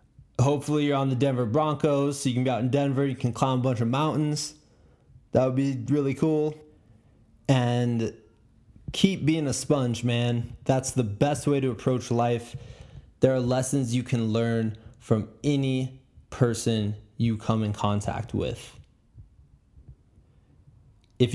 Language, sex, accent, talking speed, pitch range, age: English, male, American, 150 wpm, 115-135 Hz, 20-39